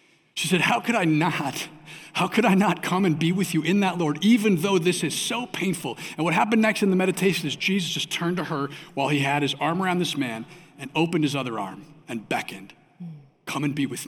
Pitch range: 140-170 Hz